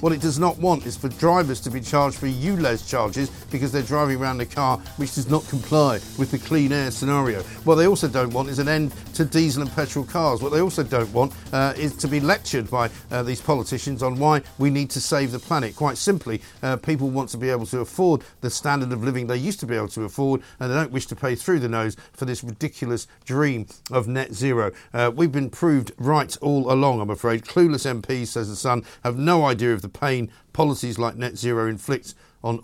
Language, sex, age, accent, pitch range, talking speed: English, male, 50-69, British, 115-145 Hz, 235 wpm